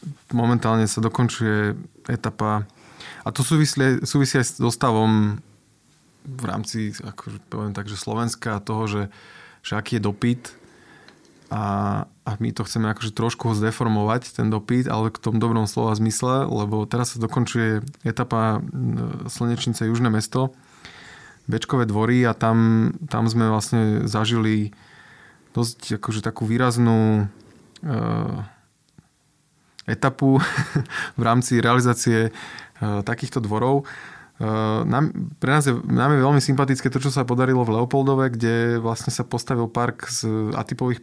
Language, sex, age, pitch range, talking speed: Slovak, male, 20-39, 110-130 Hz, 130 wpm